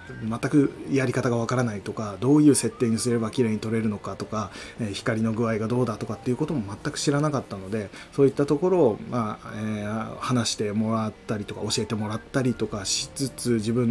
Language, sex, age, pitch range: Japanese, male, 20-39, 110-130 Hz